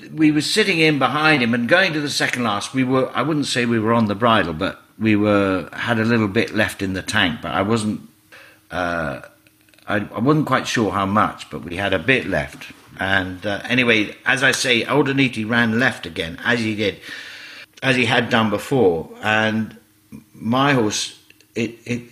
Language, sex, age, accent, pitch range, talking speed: English, male, 50-69, British, 100-130 Hz, 200 wpm